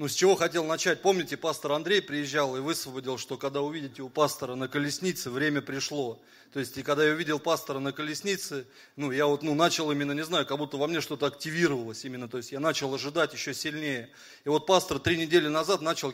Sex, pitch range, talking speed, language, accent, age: male, 135-170 Hz, 215 wpm, Russian, native, 30-49